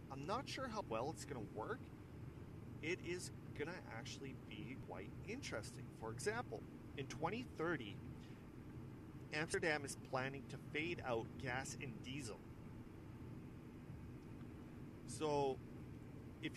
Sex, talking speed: male, 115 wpm